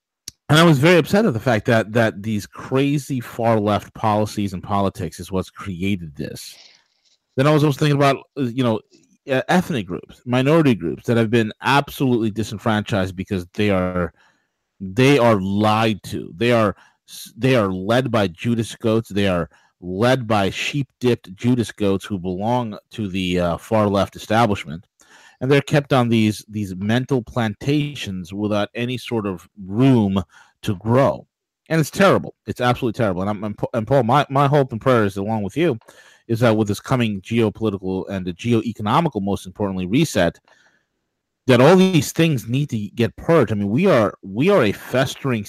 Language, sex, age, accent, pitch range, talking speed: English, male, 30-49, American, 100-130 Hz, 170 wpm